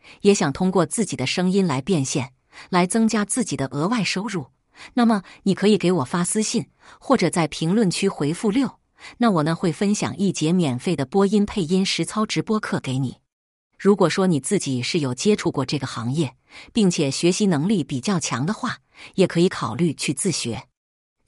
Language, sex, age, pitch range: Chinese, female, 50-69, 150-205 Hz